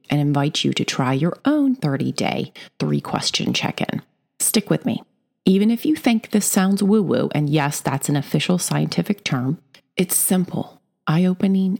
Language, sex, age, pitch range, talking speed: English, female, 30-49, 150-210 Hz, 155 wpm